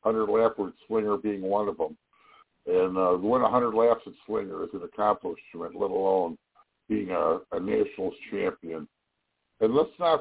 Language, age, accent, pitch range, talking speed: English, 50-69, American, 105-160 Hz, 165 wpm